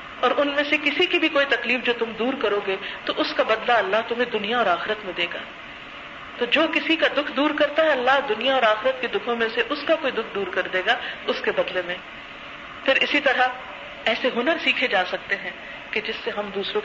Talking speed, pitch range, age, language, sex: 240 wpm, 230-300 Hz, 40-59, Urdu, female